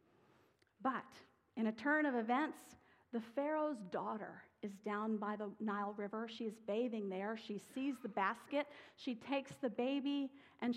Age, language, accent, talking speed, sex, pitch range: 50-69, English, American, 155 wpm, female, 210-275 Hz